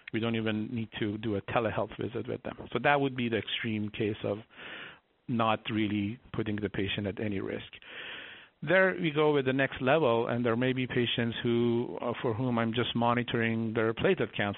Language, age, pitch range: English, 50-69, 110-130 Hz